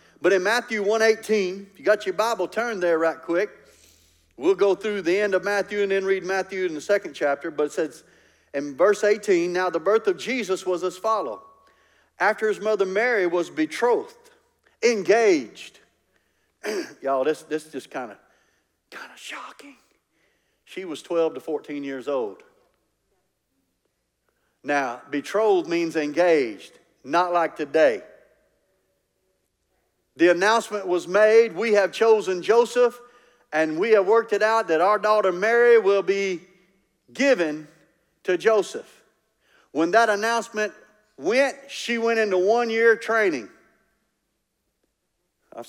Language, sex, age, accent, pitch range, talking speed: English, male, 50-69, American, 170-225 Hz, 140 wpm